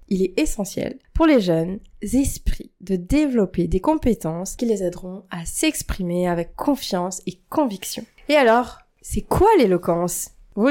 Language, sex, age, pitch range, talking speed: French, female, 20-39, 185-245 Hz, 145 wpm